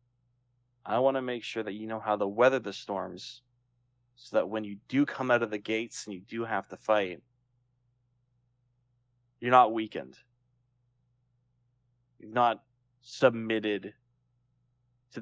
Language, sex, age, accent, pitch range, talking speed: English, male, 20-39, American, 110-125 Hz, 140 wpm